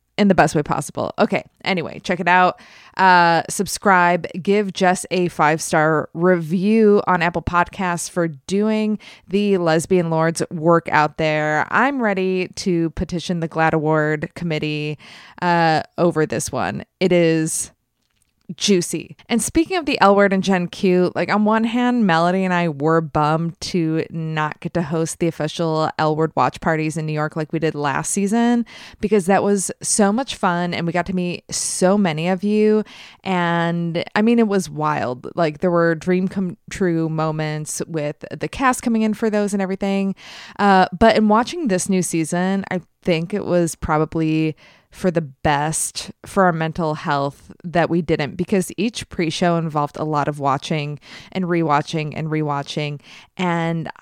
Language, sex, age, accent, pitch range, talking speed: English, female, 20-39, American, 160-190 Hz, 170 wpm